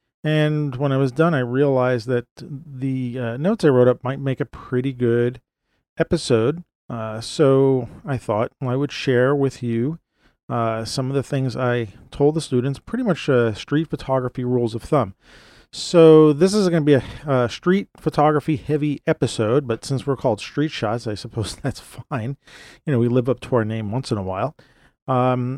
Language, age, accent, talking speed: English, 40-59, American, 190 wpm